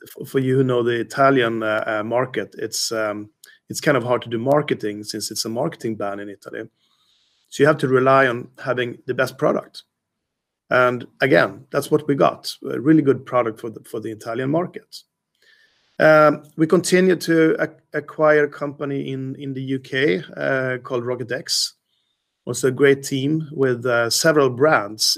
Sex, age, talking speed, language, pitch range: male, 40-59, 175 wpm, English, 120-145 Hz